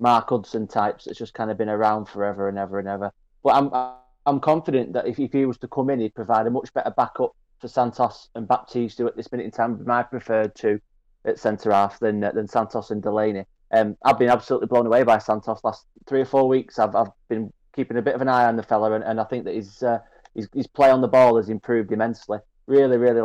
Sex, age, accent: male, 20-39, British